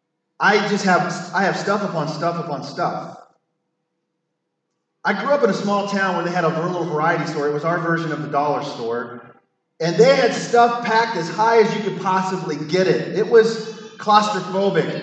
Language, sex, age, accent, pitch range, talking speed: English, male, 30-49, American, 165-210 Hz, 190 wpm